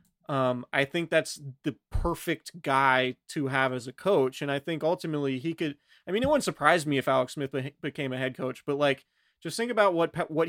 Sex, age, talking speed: male, 30-49, 215 wpm